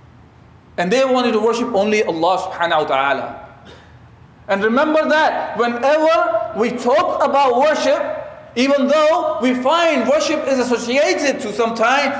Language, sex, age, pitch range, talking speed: English, male, 40-59, 235-295 Hz, 135 wpm